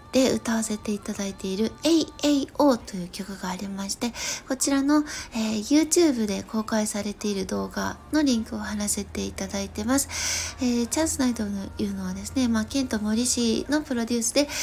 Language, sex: Japanese, female